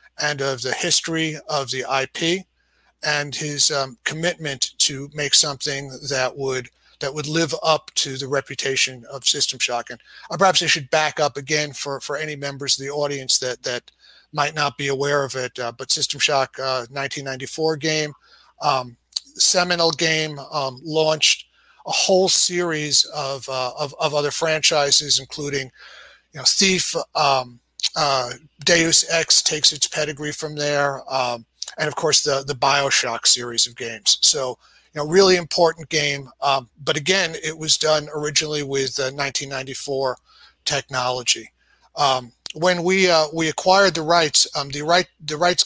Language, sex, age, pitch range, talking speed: English, male, 40-59, 135-160 Hz, 160 wpm